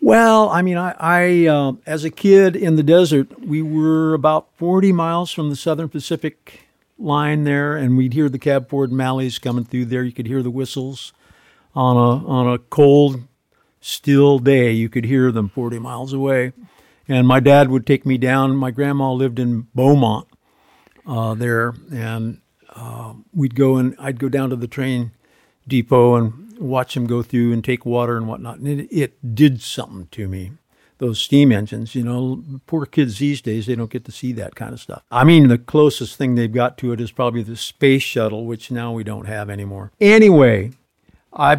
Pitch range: 120-145 Hz